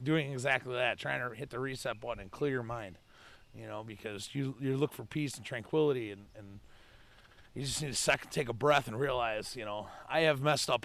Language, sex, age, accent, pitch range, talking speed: English, male, 30-49, American, 115-160 Hz, 225 wpm